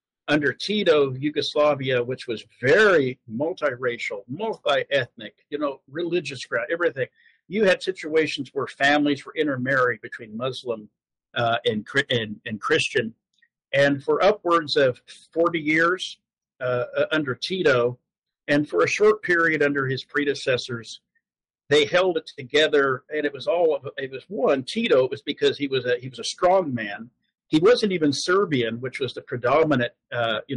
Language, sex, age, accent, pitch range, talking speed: English, male, 50-69, American, 130-175 Hz, 155 wpm